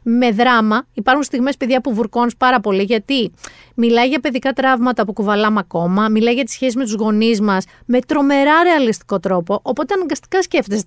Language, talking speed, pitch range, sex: Greek, 175 wpm, 205-275 Hz, female